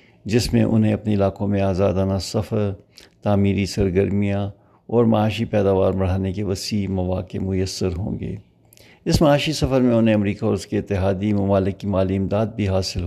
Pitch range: 100-110 Hz